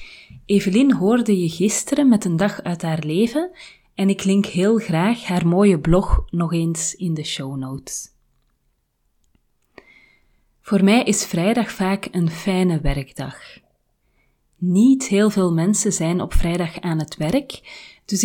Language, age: Dutch, 30-49